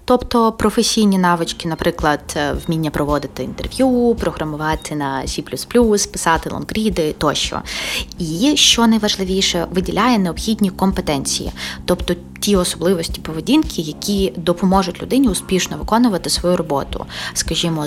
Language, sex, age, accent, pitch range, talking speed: Ukrainian, female, 20-39, native, 160-210 Hz, 105 wpm